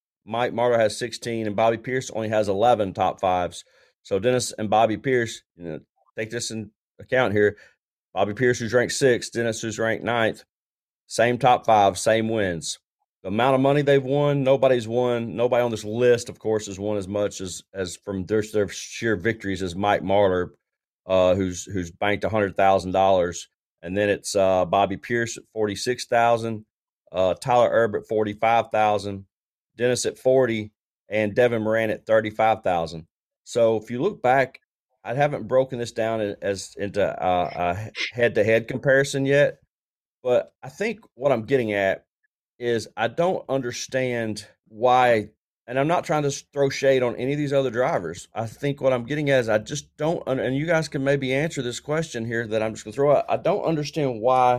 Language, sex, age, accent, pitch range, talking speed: English, male, 30-49, American, 105-130 Hz, 190 wpm